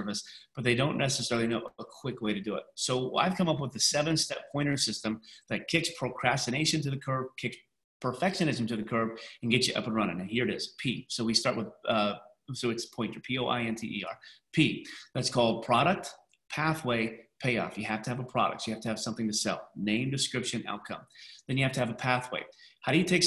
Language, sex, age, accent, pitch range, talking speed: English, male, 30-49, American, 110-130 Hz, 220 wpm